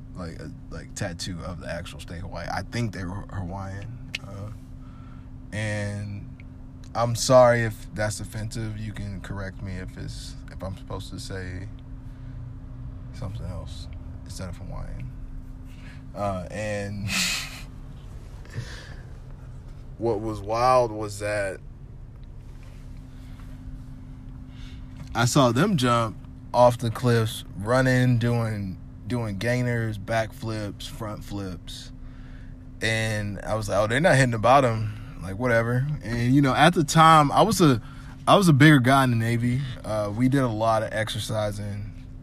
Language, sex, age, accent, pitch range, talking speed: English, male, 20-39, American, 105-125 Hz, 135 wpm